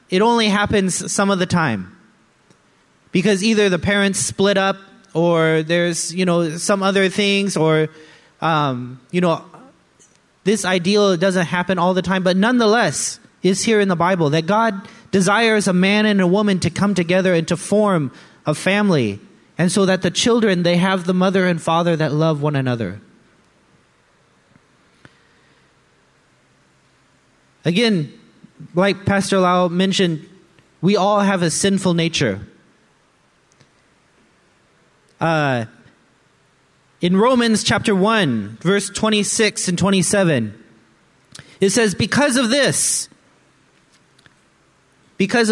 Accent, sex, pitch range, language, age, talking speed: American, male, 160-205 Hz, English, 30-49, 125 wpm